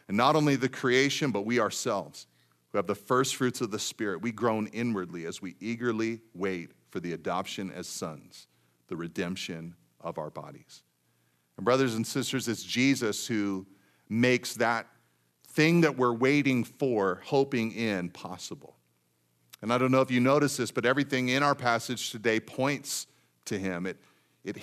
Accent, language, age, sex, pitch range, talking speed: American, English, 40-59, male, 105-135 Hz, 170 wpm